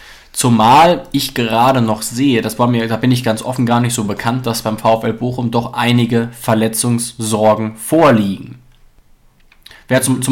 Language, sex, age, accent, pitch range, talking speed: German, male, 20-39, German, 115-130 Hz, 165 wpm